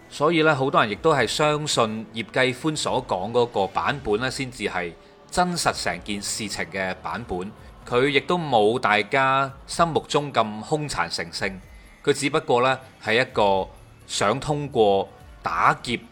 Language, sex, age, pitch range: Chinese, male, 30-49, 105-145 Hz